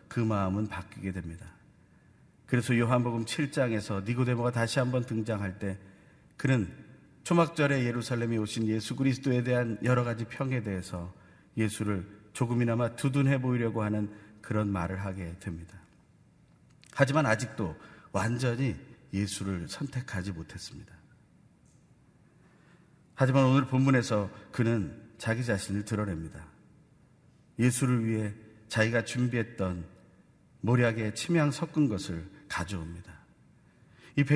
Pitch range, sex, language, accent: 100-135 Hz, male, Korean, native